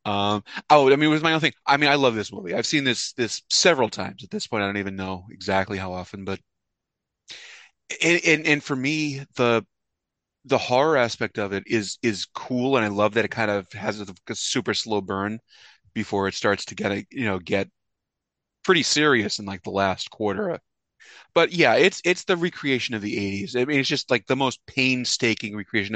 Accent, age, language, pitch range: American, 30-49, English, 100-125 Hz